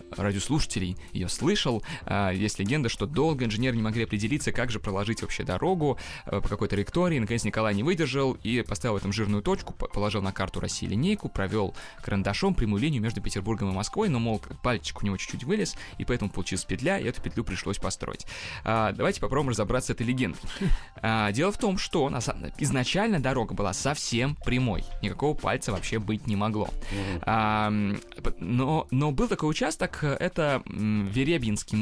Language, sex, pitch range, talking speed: Russian, male, 105-135 Hz, 160 wpm